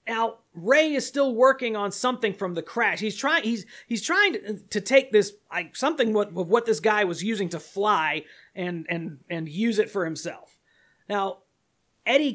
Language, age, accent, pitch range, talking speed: English, 30-49, American, 175-230 Hz, 190 wpm